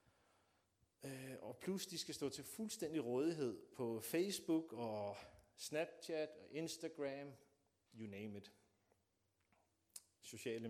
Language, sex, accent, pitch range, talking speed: Danish, male, native, 100-155 Hz, 100 wpm